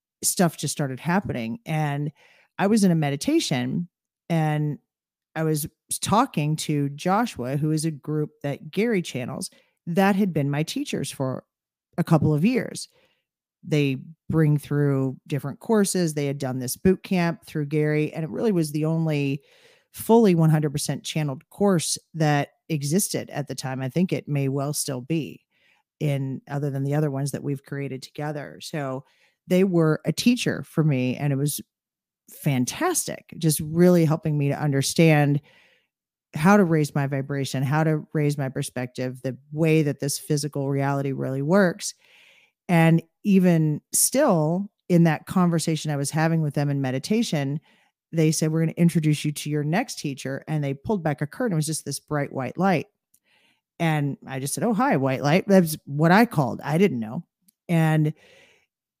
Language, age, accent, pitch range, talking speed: English, 40-59, American, 140-175 Hz, 170 wpm